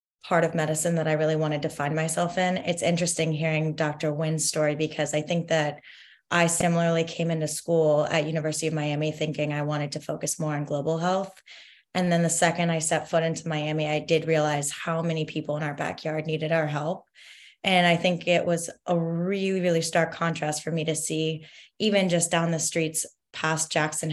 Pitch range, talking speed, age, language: 155-180 Hz, 200 wpm, 20-39, English